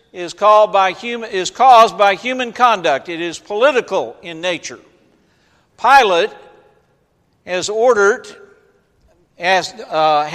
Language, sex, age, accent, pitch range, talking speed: English, male, 60-79, American, 160-225 Hz, 110 wpm